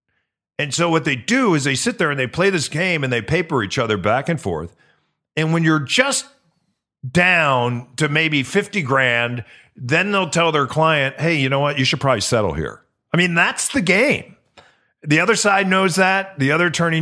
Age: 40-59